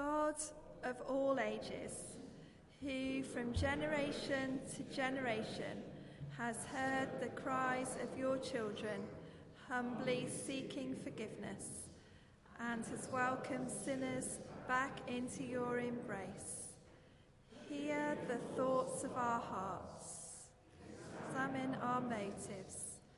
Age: 40-59